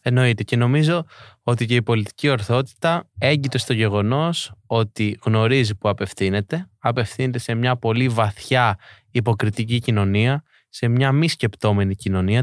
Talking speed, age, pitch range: 130 wpm, 20-39, 105-125 Hz